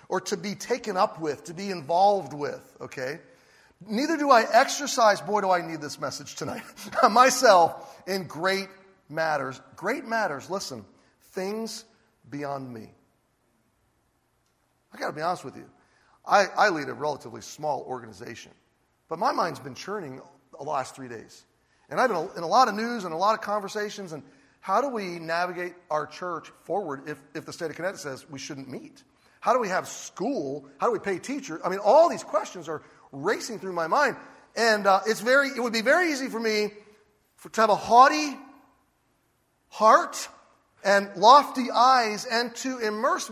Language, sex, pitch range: English, male, 170-250 Hz